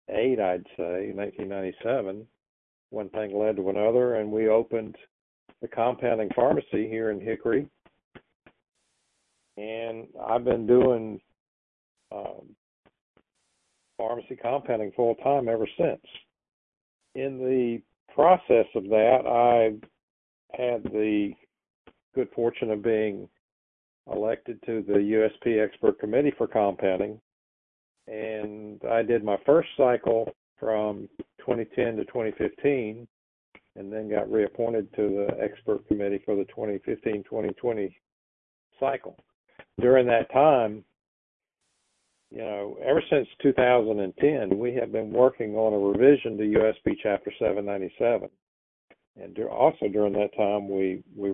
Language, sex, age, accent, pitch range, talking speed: English, male, 50-69, American, 100-115 Hz, 115 wpm